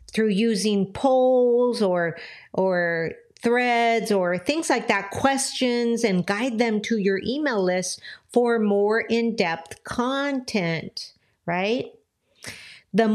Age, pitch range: 50-69, 195-250 Hz